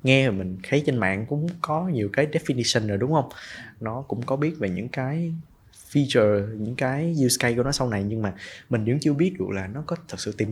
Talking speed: 240 wpm